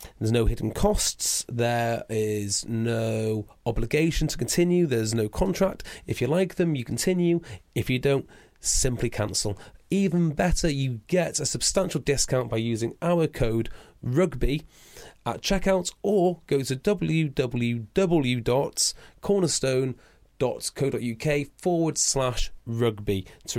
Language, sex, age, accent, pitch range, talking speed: English, male, 30-49, British, 115-160 Hz, 115 wpm